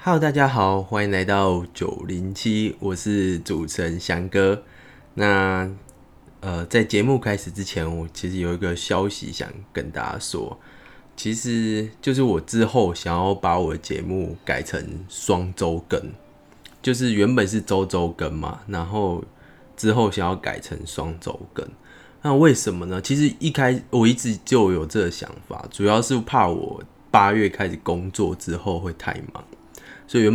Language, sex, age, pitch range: Chinese, male, 20-39, 85-105 Hz